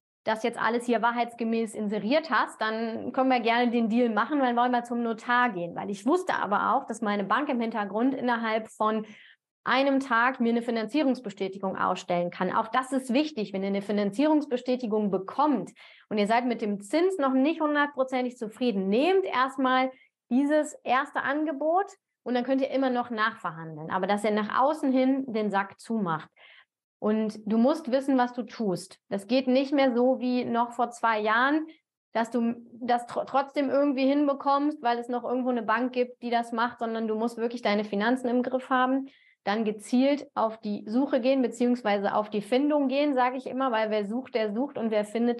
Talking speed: 190 wpm